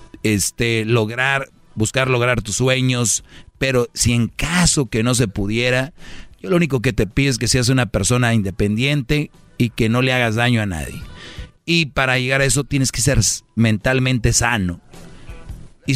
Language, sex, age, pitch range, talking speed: Spanish, male, 40-59, 110-135 Hz, 170 wpm